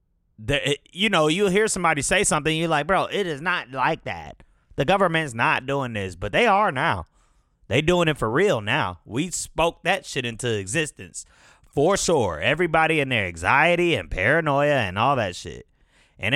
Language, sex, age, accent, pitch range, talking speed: English, male, 30-49, American, 100-155 Hz, 180 wpm